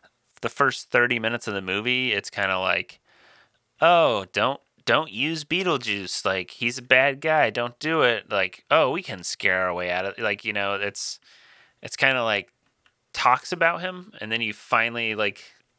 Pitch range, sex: 95-120 Hz, male